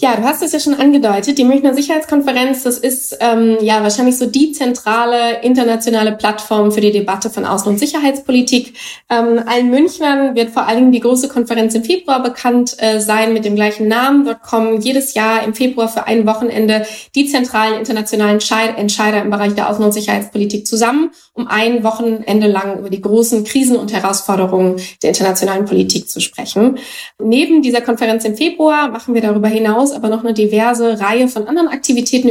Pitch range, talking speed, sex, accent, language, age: 210-245 Hz, 180 wpm, female, German, German, 20-39